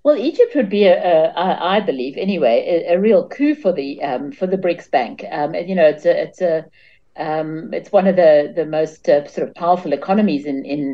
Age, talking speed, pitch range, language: 60-79, 230 wpm, 150-195 Hz, English